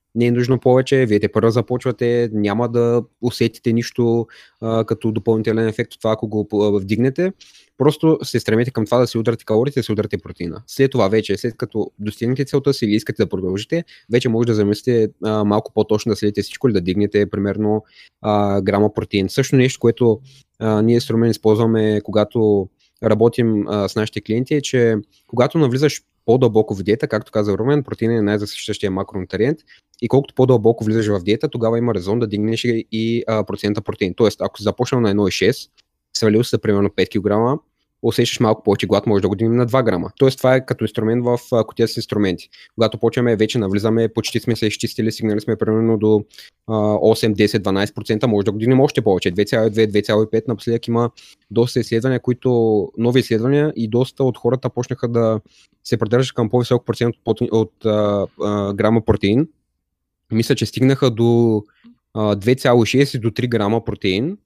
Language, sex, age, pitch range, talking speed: Bulgarian, male, 20-39, 105-120 Hz, 180 wpm